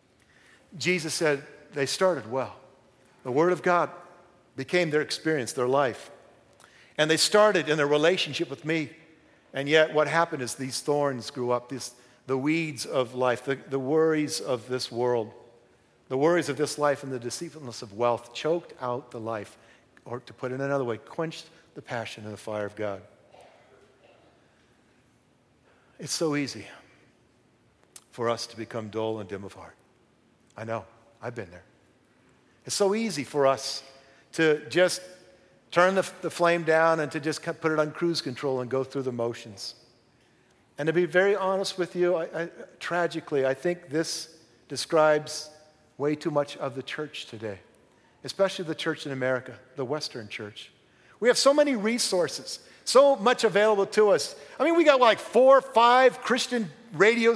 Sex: male